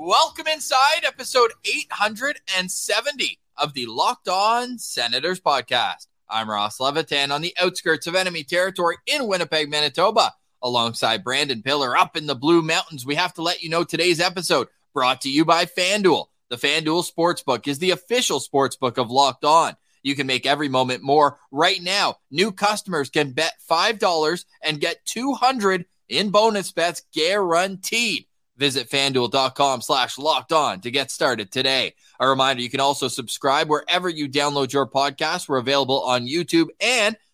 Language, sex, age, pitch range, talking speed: English, male, 20-39, 140-190 Hz, 155 wpm